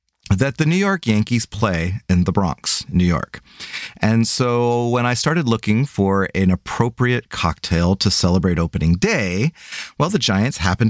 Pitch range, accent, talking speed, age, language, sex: 95-135 Hz, American, 160 wpm, 30-49, English, male